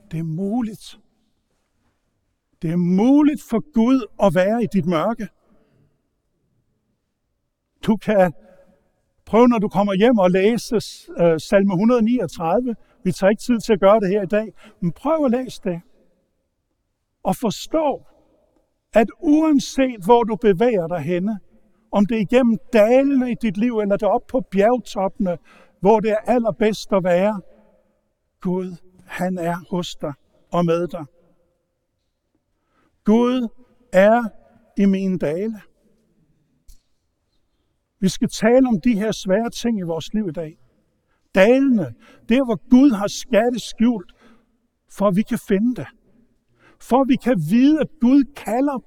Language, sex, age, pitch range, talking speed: Danish, male, 60-79, 185-235 Hz, 145 wpm